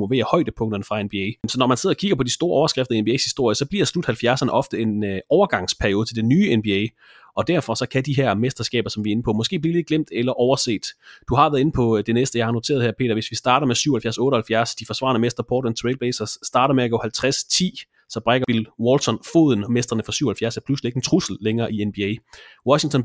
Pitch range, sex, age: 115-135 Hz, male, 30-49